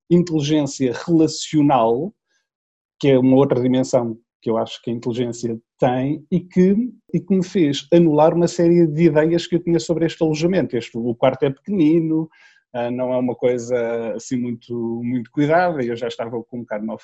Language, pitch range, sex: Portuguese, 125-165 Hz, male